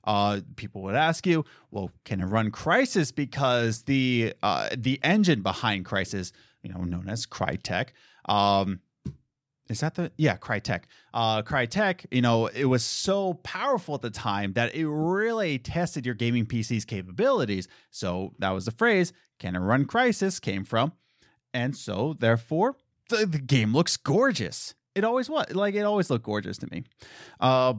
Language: English